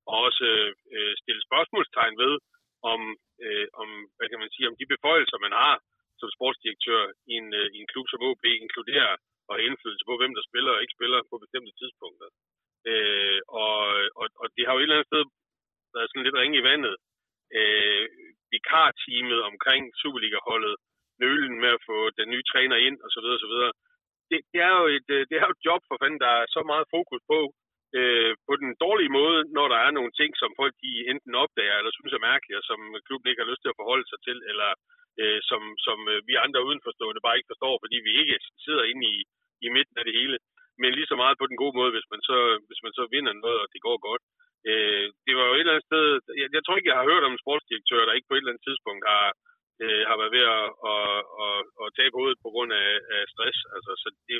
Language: Danish